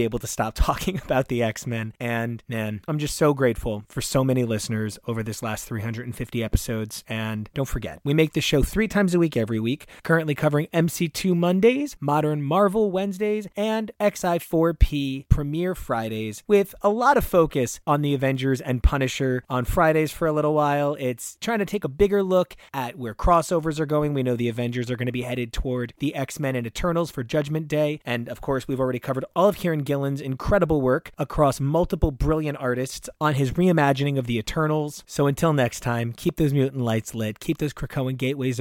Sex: male